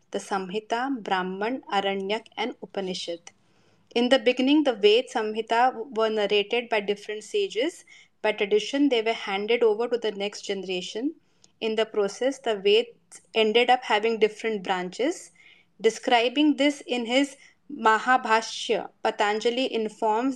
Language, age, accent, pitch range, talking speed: Hindi, 20-39, native, 210-255 Hz, 130 wpm